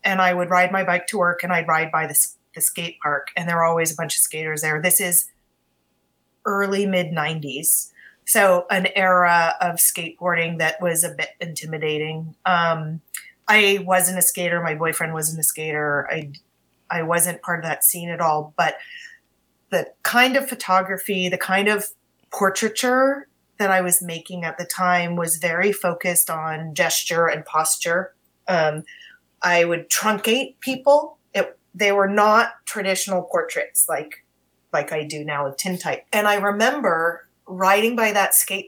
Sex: female